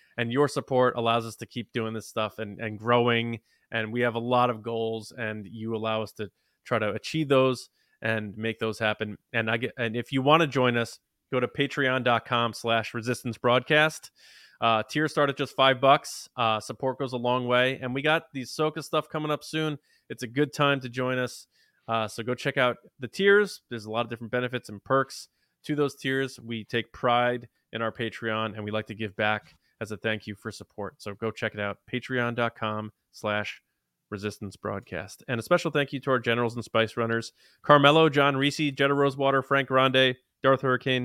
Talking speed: 210 wpm